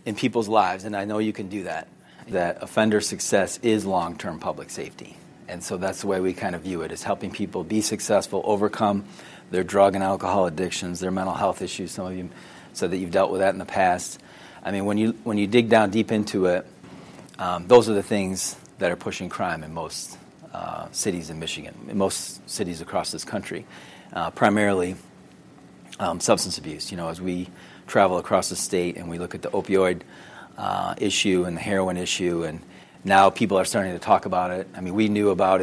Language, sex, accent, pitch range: English, male, American, 90-105 Hz